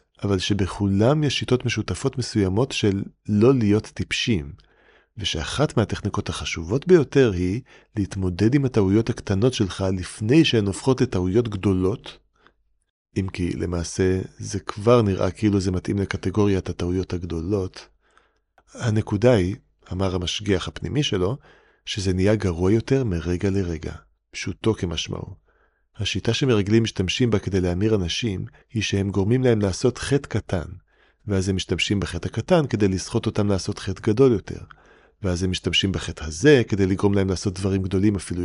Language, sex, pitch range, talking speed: Hebrew, male, 95-120 Hz, 140 wpm